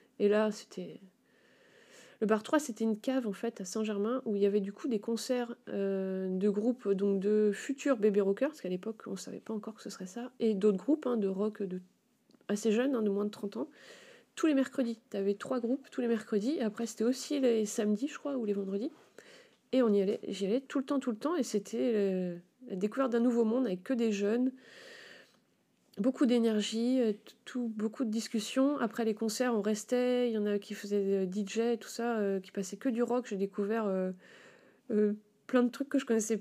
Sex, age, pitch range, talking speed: female, 30-49, 205-250 Hz, 225 wpm